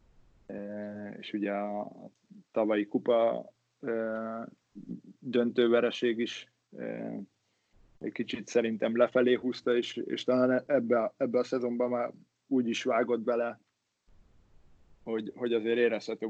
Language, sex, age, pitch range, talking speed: Hungarian, male, 20-39, 105-120 Hz, 110 wpm